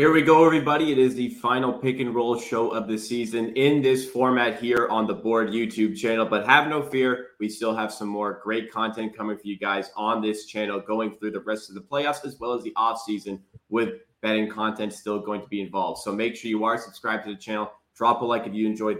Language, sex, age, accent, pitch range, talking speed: English, male, 20-39, American, 100-120 Hz, 245 wpm